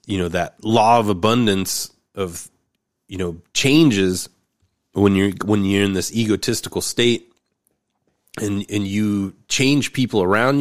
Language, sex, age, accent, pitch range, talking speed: English, male, 30-49, American, 90-110 Hz, 135 wpm